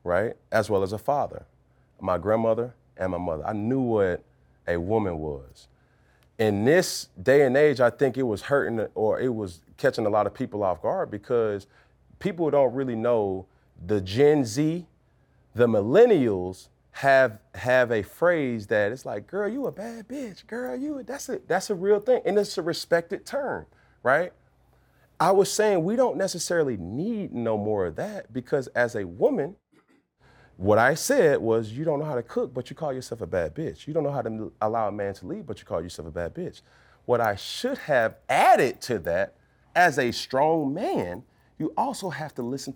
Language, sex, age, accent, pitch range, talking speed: English, male, 30-49, American, 115-180 Hz, 195 wpm